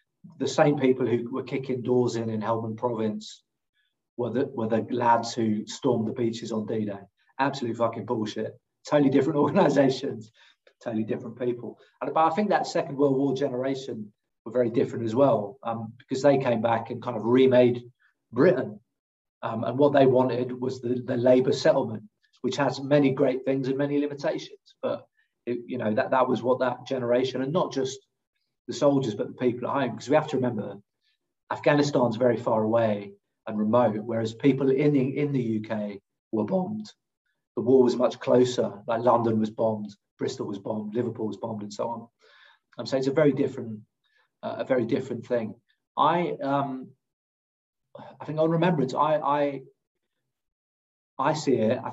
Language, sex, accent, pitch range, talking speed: English, male, British, 115-135 Hz, 175 wpm